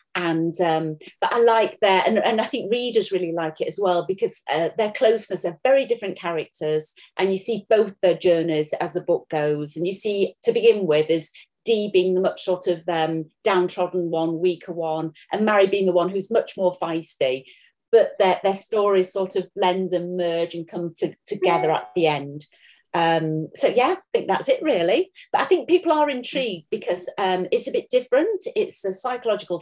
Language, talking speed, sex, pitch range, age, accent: English, 200 wpm, female, 175-250 Hz, 40-59, British